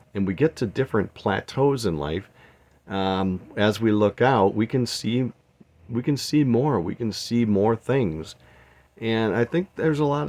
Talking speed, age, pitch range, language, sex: 180 wpm, 50-69, 95-125 Hz, English, male